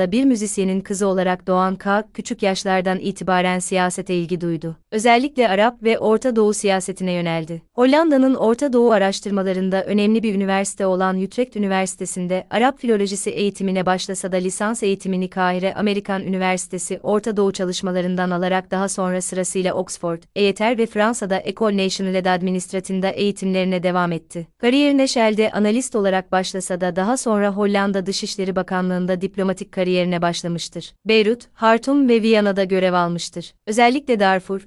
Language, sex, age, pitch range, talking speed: Turkish, female, 30-49, 185-215 Hz, 135 wpm